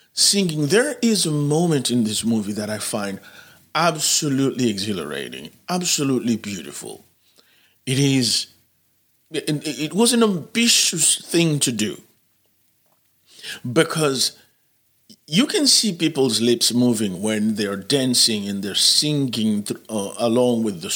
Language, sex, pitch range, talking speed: English, male, 110-155 Hz, 115 wpm